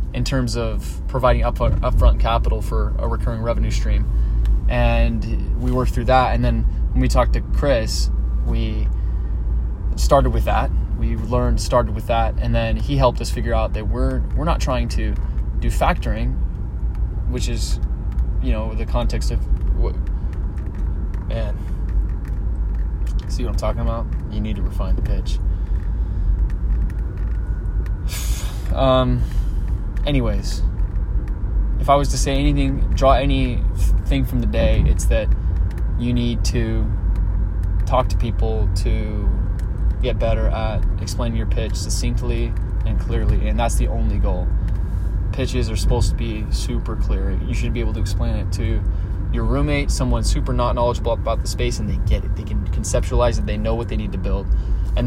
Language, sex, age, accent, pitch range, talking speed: English, male, 20-39, American, 90-115 Hz, 155 wpm